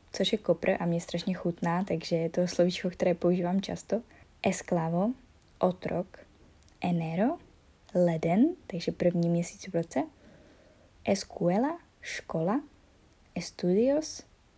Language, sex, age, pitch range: Czech, female, 20-39, 175-210 Hz